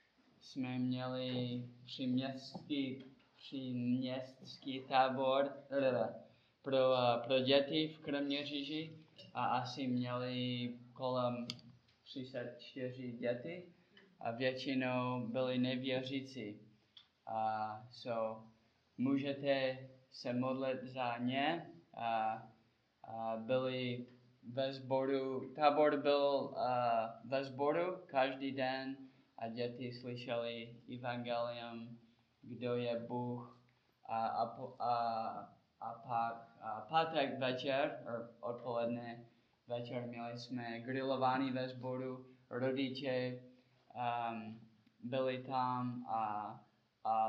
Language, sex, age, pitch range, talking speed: Czech, male, 10-29, 120-130 Hz, 85 wpm